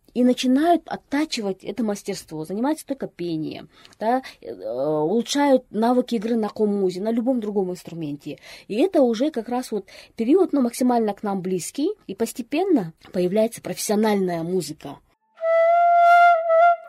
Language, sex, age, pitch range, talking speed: Russian, female, 20-39, 185-255 Hz, 115 wpm